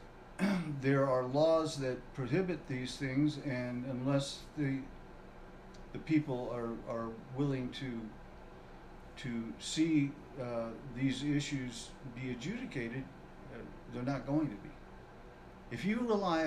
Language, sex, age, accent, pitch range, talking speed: English, male, 50-69, American, 125-150 Hz, 115 wpm